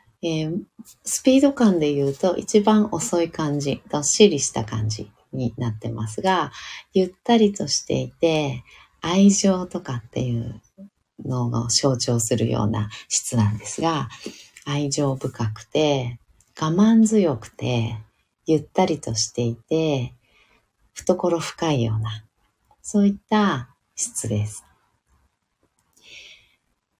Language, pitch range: Japanese, 115-195 Hz